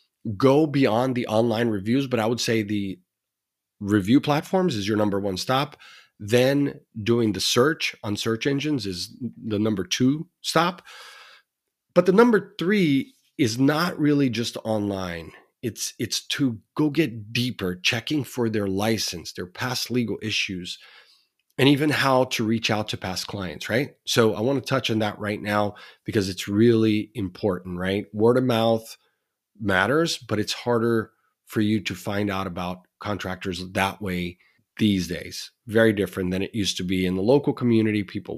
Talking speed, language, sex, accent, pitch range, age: 165 wpm, English, male, American, 100-130 Hz, 30-49